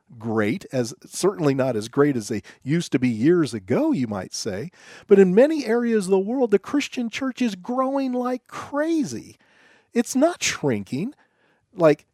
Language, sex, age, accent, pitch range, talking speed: English, male, 40-59, American, 150-225 Hz, 170 wpm